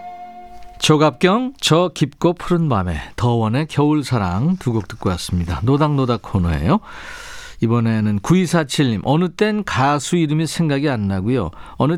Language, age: Korean, 40-59